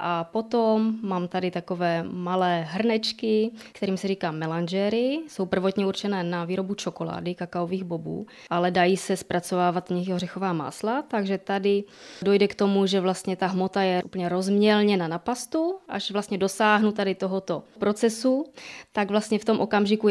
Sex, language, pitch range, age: female, Czech, 175-210 Hz, 20-39